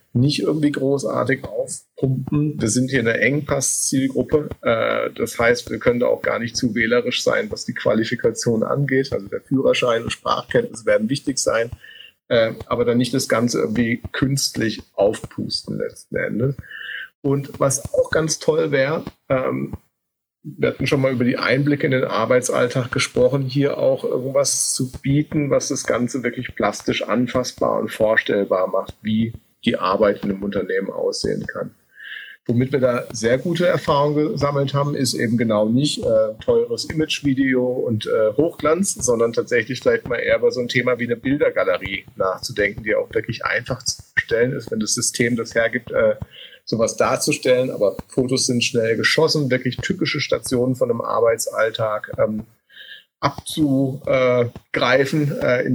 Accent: German